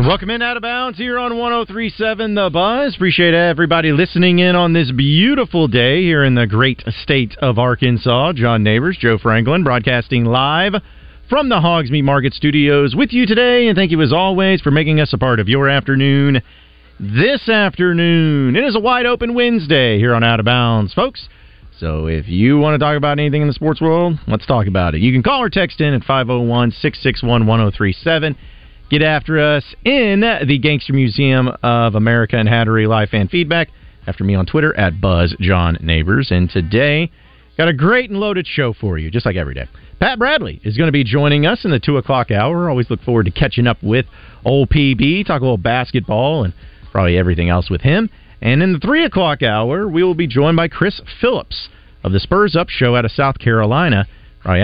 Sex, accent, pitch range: male, American, 115-170 Hz